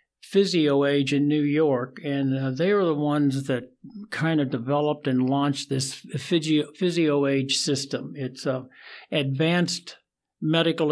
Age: 60-79